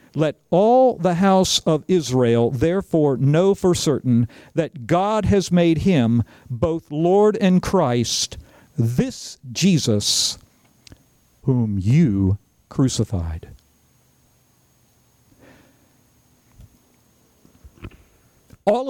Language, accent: English, American